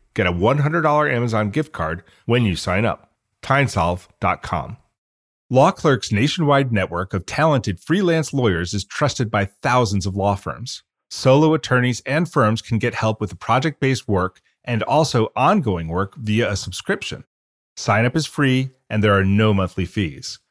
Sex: male